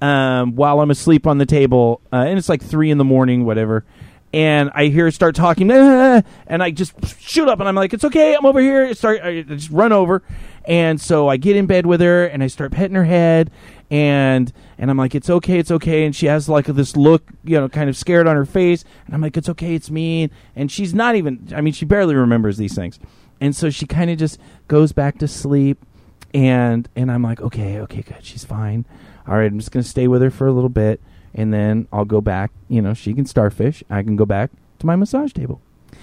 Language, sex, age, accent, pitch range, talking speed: English, male, 30-49, American, 125-170 Hz, 245 wpm